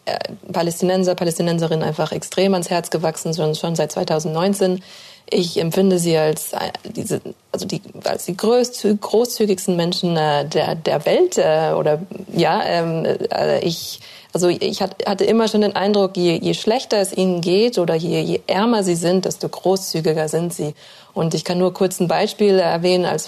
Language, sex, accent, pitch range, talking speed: German, female, German, 170-195 Hz, 155 wpm